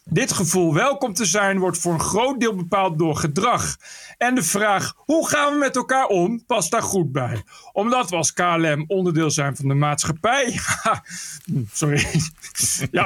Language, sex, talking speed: Dutch, male, 175 wpm